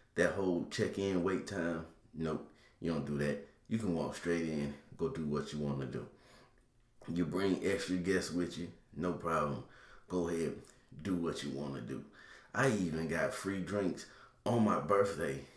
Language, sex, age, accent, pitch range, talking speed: English, male, 30-49, American, 80-100 Hz, 175 wpm